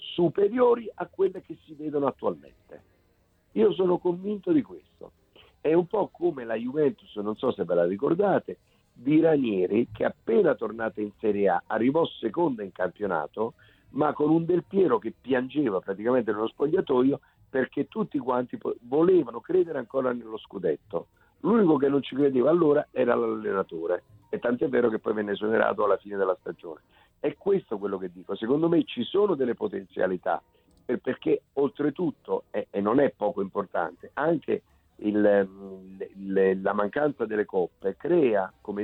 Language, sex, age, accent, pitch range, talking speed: Italian, male, 50-69, native, 110-180 Hz, 155 wpm